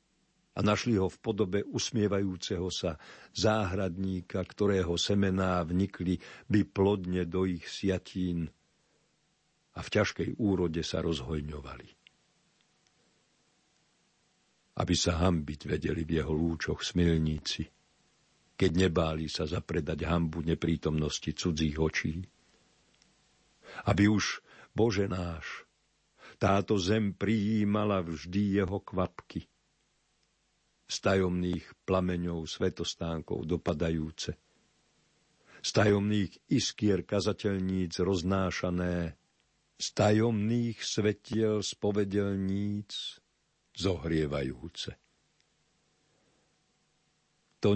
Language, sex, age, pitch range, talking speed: Slovak, male, 50-69, 85-105 Hz, 80 wpm